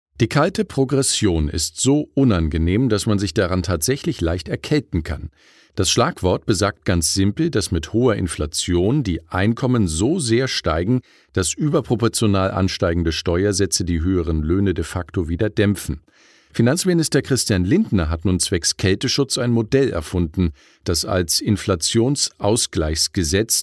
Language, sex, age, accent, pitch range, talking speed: German, male, 50-69, German, 90-120 Hz, 130 wpm